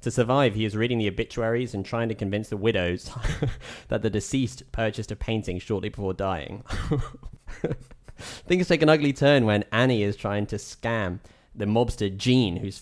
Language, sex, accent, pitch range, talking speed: English, male, British, 100-125 Hz, 175 wpm